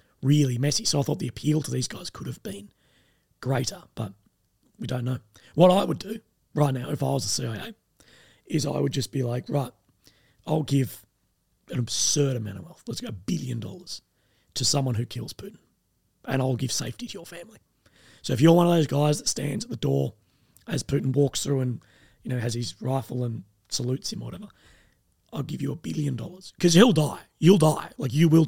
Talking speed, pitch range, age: 215 wpm, 120-155 Hz, 30-49